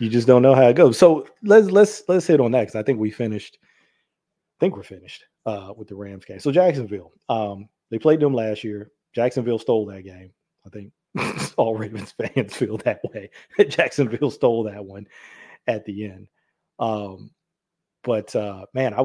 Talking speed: 190 wpm